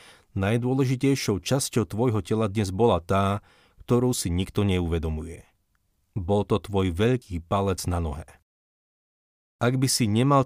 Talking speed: 125 wpm